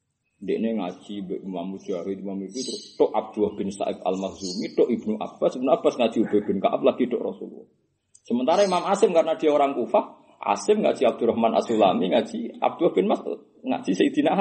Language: Indonesian